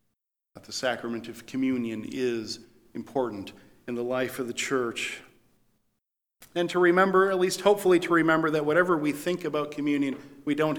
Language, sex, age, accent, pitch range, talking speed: English, male, 40-59, American, 115-145 Hz, 160 wpm